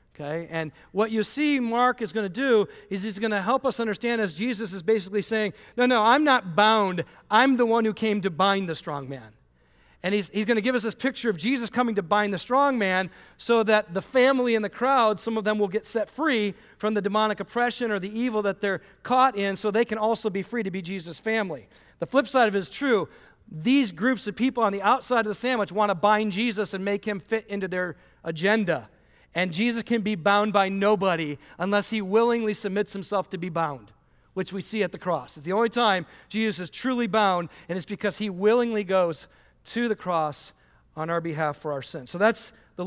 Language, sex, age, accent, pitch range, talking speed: English, male, 40-59, American, 180-230 Hz, 230 wpm